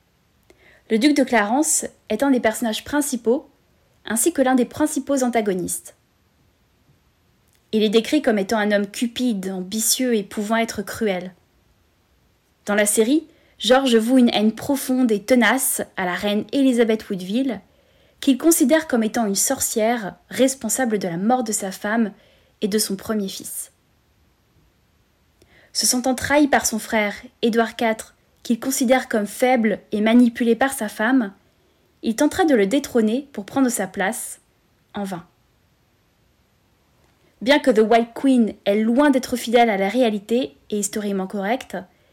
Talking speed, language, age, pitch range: 150 wpm, French, 20-39, 210-260 Hz